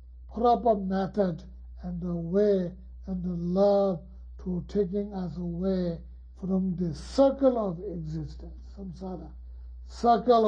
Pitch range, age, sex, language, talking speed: 155-215 Hz, 60-79, male, English, 110 wpm